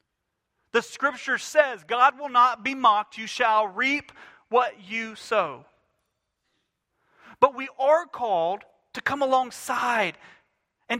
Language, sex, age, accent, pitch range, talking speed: English, male, 40-59, American, 185-250 Hz, 120 wpm